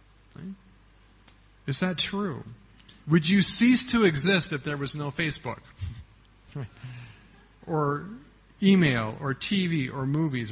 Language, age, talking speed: English, 40-59, 110 wpm